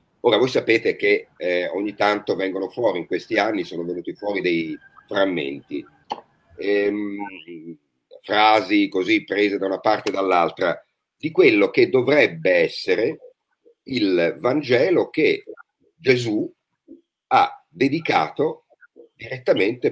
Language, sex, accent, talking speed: Italian, male, native, 115 wpm